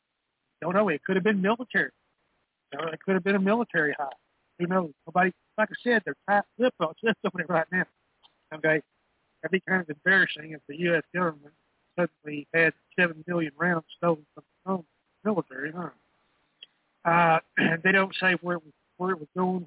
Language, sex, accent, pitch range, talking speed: English, male, American, 150-185 Hz, 185 wpm